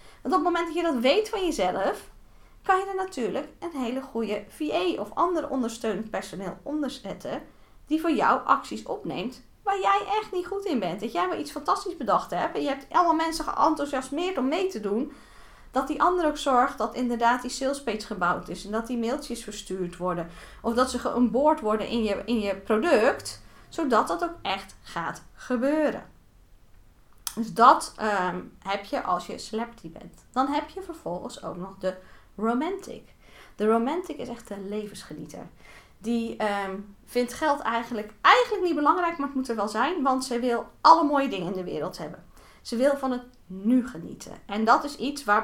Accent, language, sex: Dutch, Dutch, female